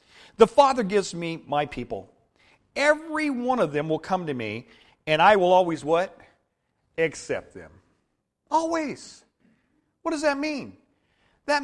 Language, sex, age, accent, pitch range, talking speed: English, male, 50-69, American, 190-265 Hz, 140 wpm